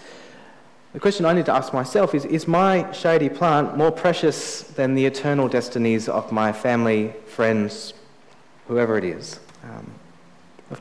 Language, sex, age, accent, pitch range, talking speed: English, male, 30-49, Australian, 115-150 Hz, 150 wpm